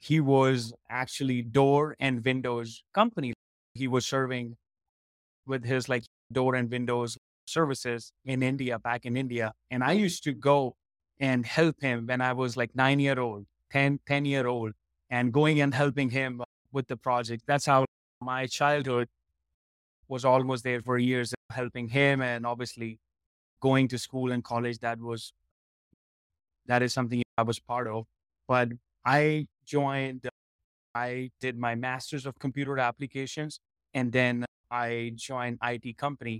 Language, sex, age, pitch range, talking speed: English, male, 20-39, 120-140 Hz, 150 wpm